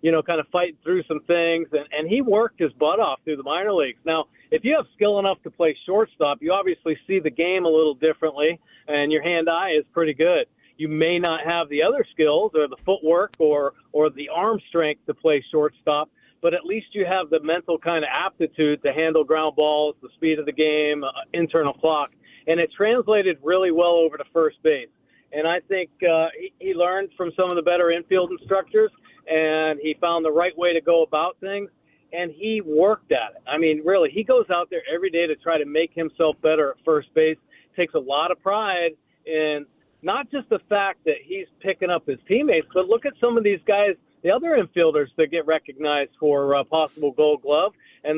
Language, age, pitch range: English, 50-69, 155-190 Hz